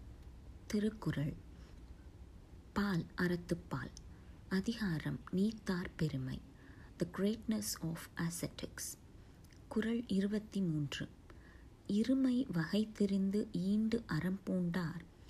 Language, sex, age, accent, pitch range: Tamil, female, 30-49, native, 150-215 Hz